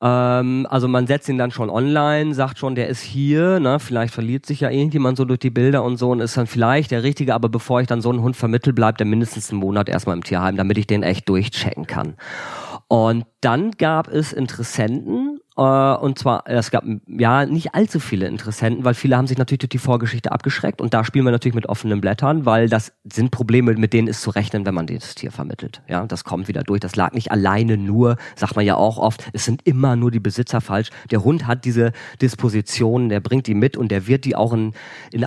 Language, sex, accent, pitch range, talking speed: German, male, German, 115-140 Hz, 230 wpm